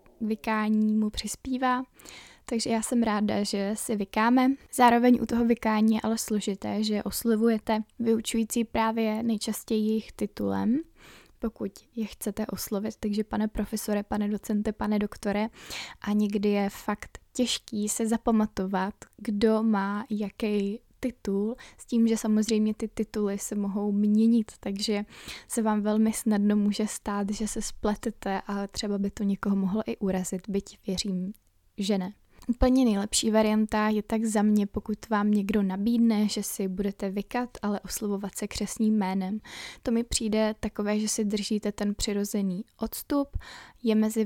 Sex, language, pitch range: female, Czech, 205-225 Hz